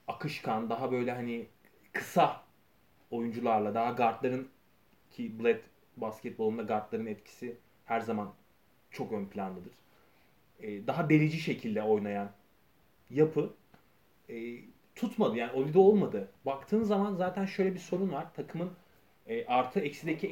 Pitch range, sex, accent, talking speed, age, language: 115-180 Hz, male, native, 120 wpm, 30-49, Turkish